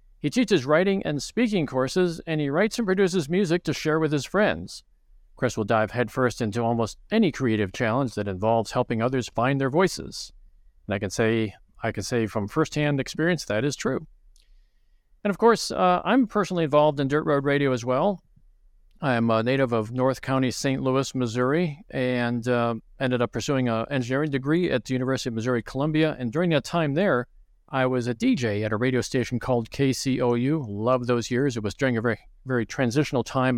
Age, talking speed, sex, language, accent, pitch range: 50-69, 195 wpm, male, English, American, 115-150 Hz